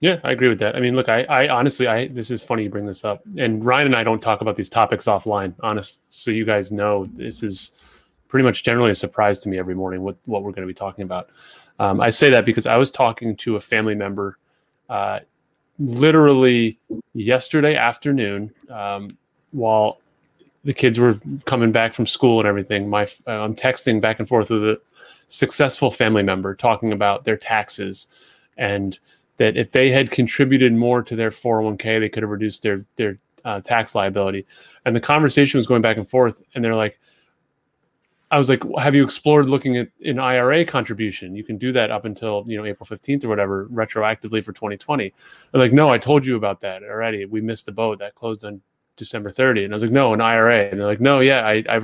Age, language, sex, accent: 30-49, English, male, American